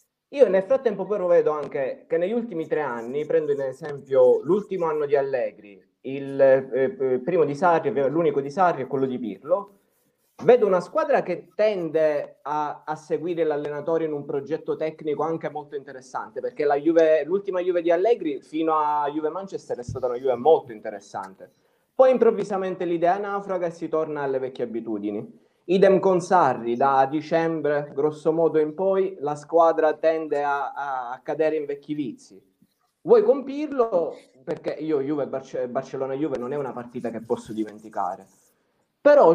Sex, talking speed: male, 160 wpm